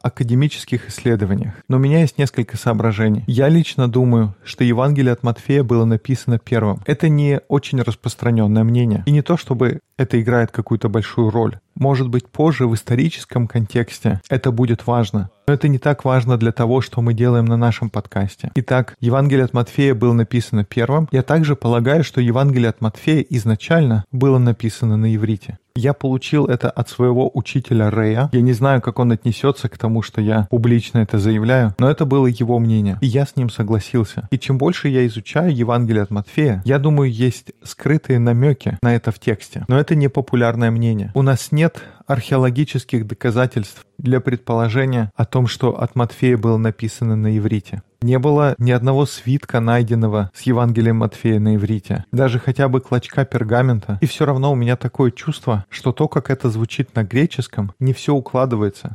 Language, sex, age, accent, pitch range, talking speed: Russian, male, 20-39, native, 115-135 Hz, 175 wpm